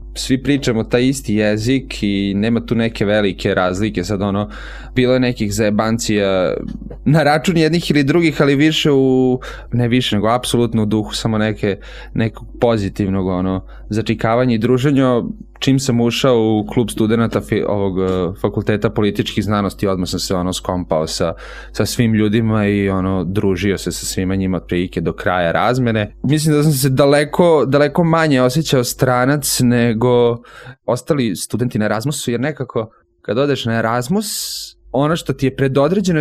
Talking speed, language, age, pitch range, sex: 155 wpm, Croatian, 20-39, 100-130 Hz, male